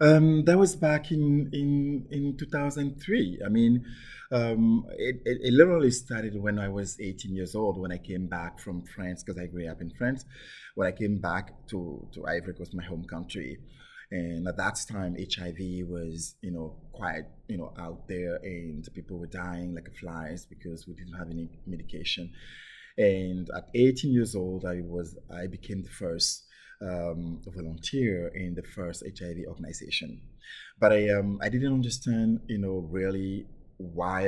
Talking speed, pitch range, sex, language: 175 wpm, 85-110 Hz, male, English